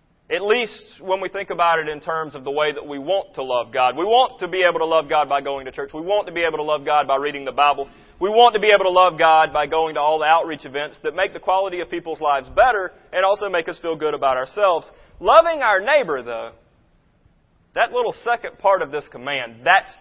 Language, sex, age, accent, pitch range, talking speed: English, male, 30-49, American, 150-210 Hz, 255 wpm